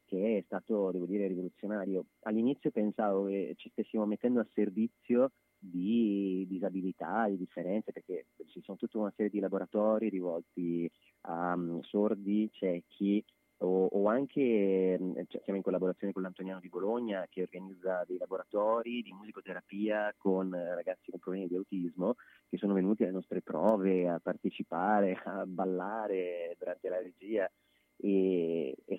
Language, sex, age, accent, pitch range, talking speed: Italian, male, 30-49, native, 90-105 Hz, 140 wpm